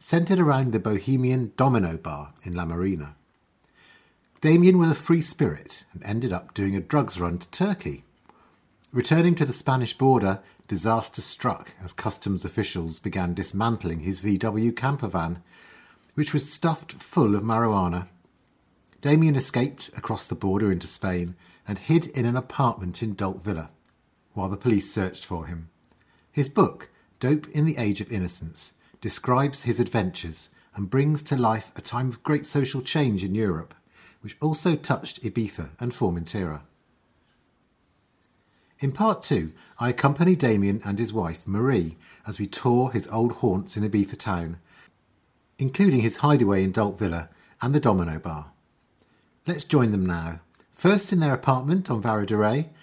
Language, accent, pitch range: English, British, 95-140 Hz